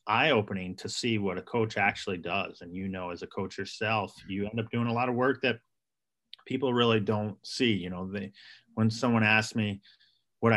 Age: 30-49